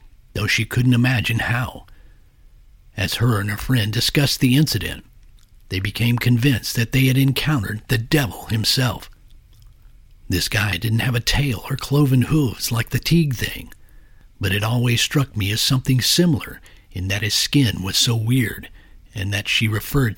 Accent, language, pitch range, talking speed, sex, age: American, English, 105-130 Hz, 165 wpm, male, 50-69